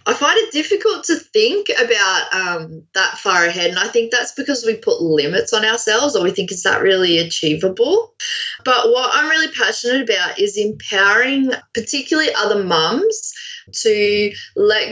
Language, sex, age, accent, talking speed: English, female, 20-39, Australian, 165 wpm